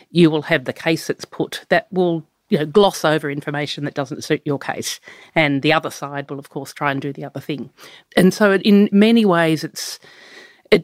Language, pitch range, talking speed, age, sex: English, 150-200 Hz, 220 wpm, 40-59, female